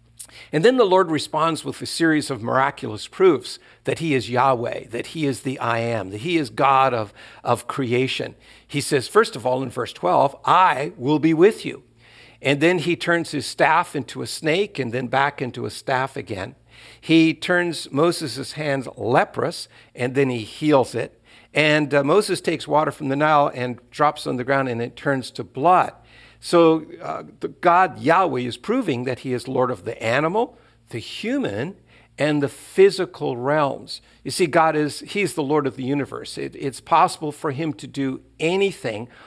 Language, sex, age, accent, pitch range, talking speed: English, male, 60-79, American, 125-160 Hz, 185 wpm